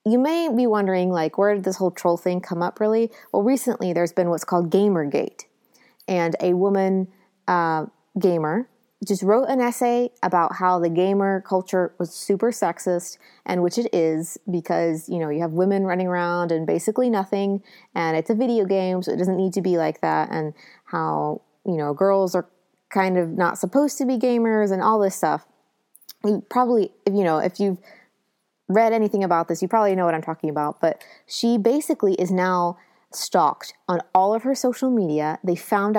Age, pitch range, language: 20-39, 175-215 Hz, English